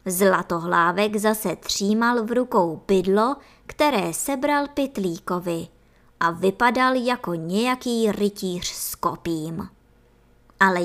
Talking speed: 95 wpm